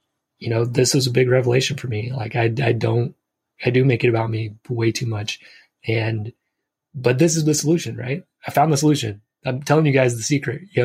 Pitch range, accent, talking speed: 120-145 Hz, American, 220 wpm